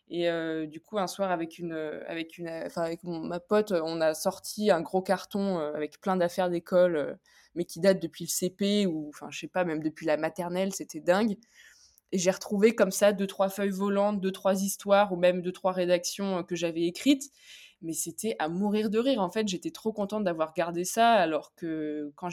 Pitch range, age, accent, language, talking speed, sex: 165-210 Hz, 20-39, French, French, 210 wpm, female